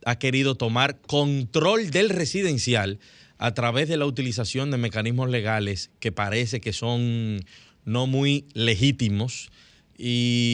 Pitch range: 115-150 Hz